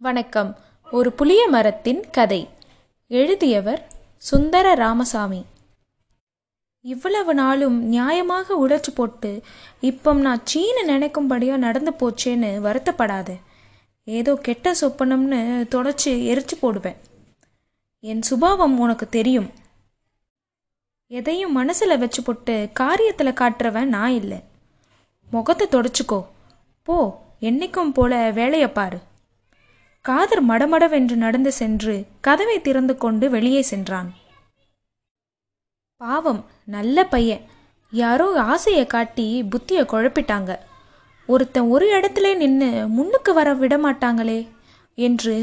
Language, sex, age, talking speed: Tamil, female, 20-39, 90 wpm